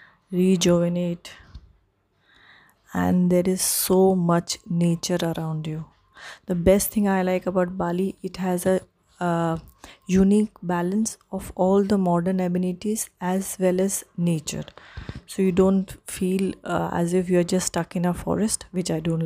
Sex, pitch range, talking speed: female, 170-190 Hz, 150 wpm